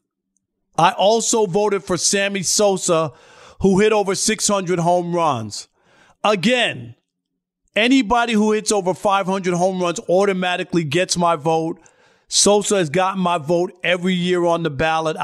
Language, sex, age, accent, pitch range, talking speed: English, male, 40-59, American, 160-195 Hz, 135 wpm